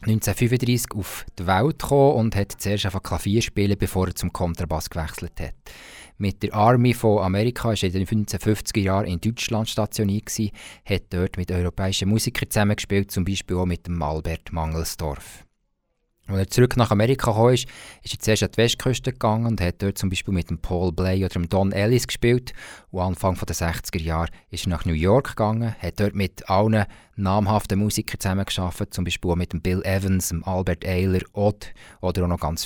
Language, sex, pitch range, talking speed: German, male, 90-115 Hz, 195 wpm